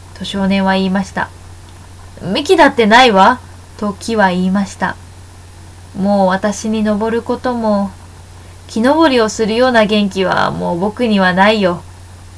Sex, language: female, Japanese